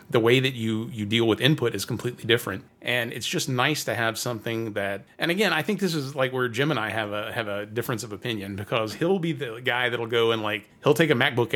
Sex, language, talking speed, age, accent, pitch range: male, English, 260 wpm, 30-49, American, 110-150 Hz